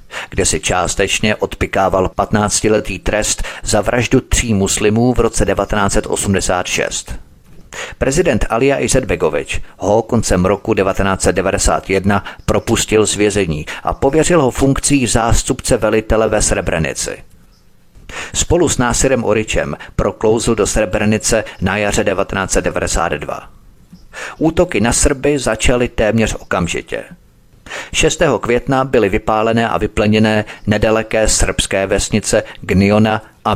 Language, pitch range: Czech, 95-115 Hz